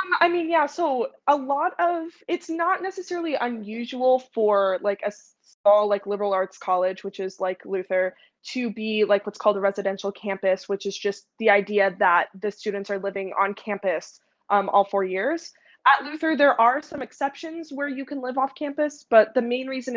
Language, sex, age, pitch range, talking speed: English, female, 20-39, 200-260 Hz, 190 wpm